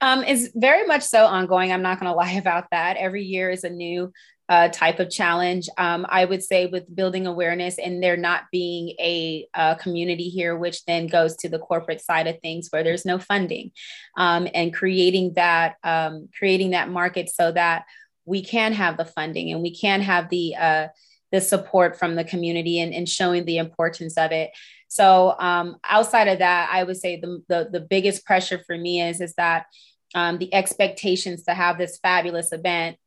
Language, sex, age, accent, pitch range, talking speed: English, female, 30-49, American, 170-185 Hz, 200 wpm